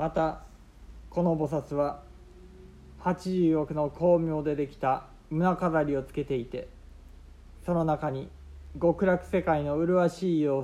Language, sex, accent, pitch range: Japanese, male, native, 130-165 Hz